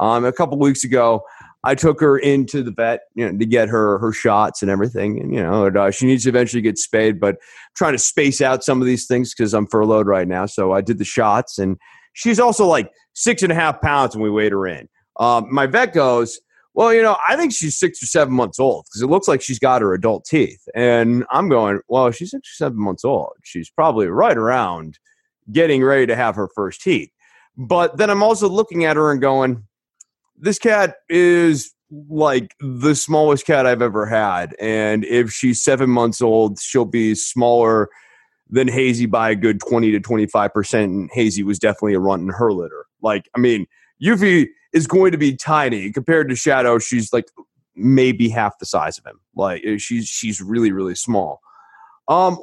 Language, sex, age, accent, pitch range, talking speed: English, male, 30-49, American, 110-155 Hz, 205 wpm